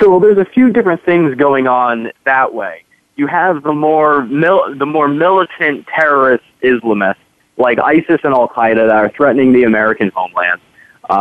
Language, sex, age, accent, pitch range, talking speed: English, male, 30-49, American, 120-165 Hz, 170 wpm